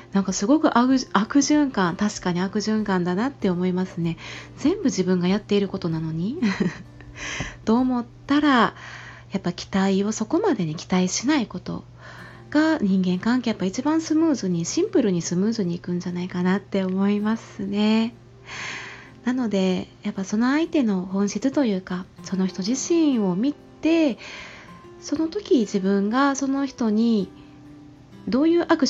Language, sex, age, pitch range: Japanese, female, 30-49, 180-260 Hz